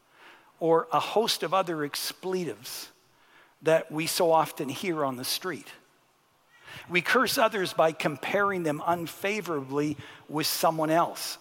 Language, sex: English, male